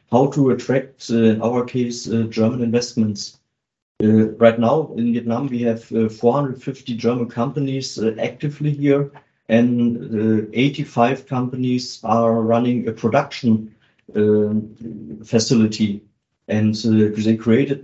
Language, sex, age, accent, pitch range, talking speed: English, male, 50-69, German, 110-130 Hz, 130 wpm